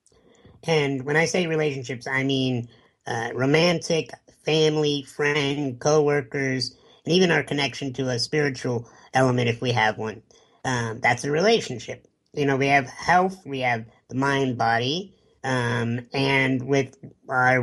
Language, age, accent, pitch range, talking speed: English, 50-69, American, 130-155 Hz, 140 wpm